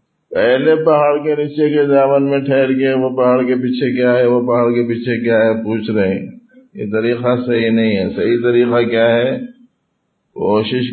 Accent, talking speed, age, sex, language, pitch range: Indian, 190 wpm, 50-69, male, English, 110-140 Hz